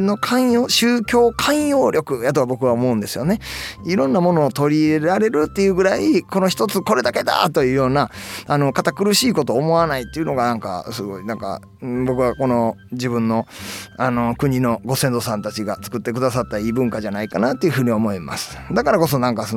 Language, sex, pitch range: Japanese, male, 110-165 Hz